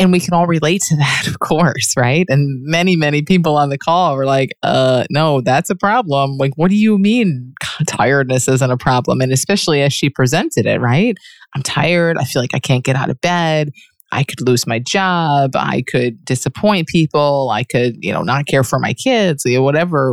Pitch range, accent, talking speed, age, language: 140-185 Hz, American, 220 wpm, 30-49, English